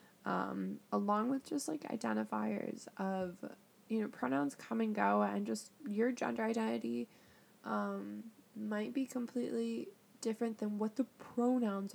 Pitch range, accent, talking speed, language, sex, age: 190-230 Hz, American, 135 wpm, English, female, 10-29